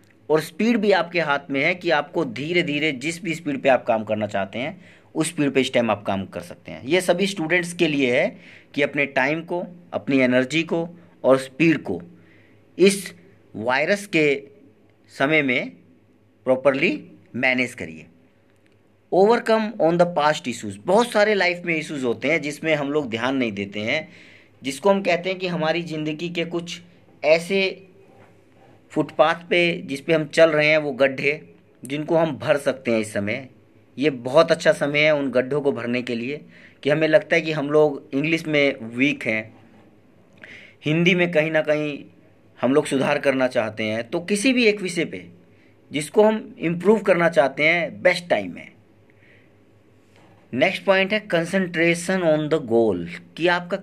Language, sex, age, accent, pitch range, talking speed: Hindi, male, 50-69, native, 125-170 Hz, 175 wpm